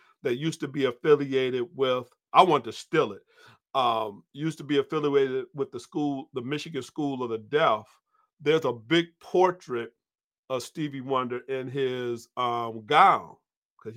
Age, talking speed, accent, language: 40-59, 160 wpm, American, English